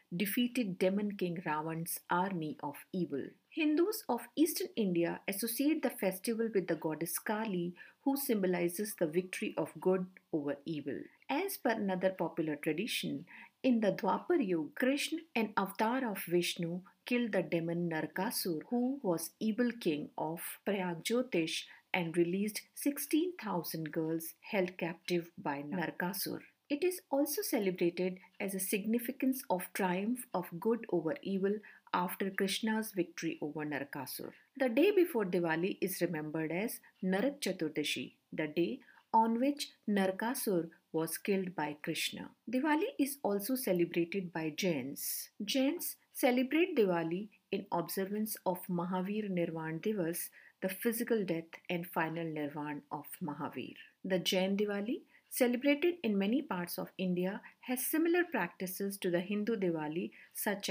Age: 50-69